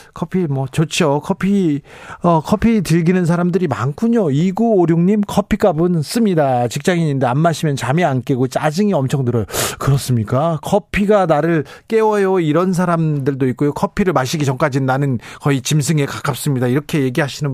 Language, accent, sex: Korean, native, male